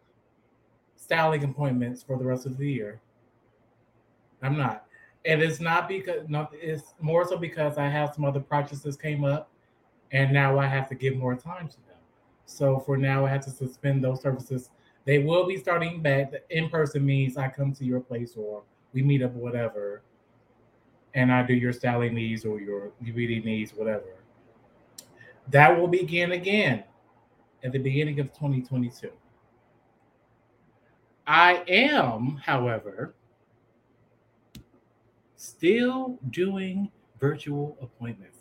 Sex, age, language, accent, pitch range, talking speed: male, 20-39, English, American, 125-160 Hz, 140 wpm